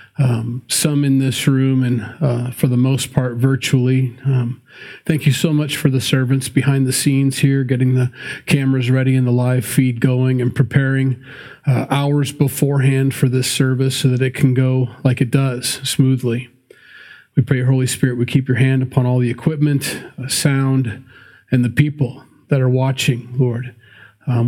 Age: 40-59